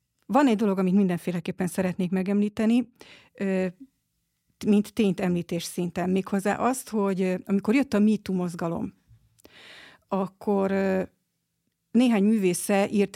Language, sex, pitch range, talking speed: Hungarian, female, 185-215 Hz, 105 wpm